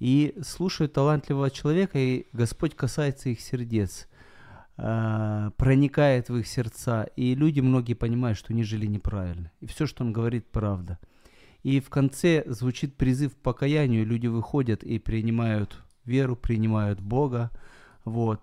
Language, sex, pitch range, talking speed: Ukrainian, male, 105-135 Hz, 145 wpm